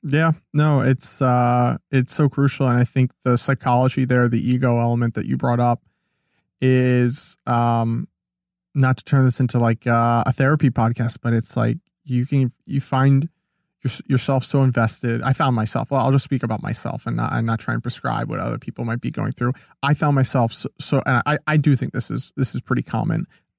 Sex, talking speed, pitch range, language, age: male, 205 wpm, 120-140 Hz, English, 20-39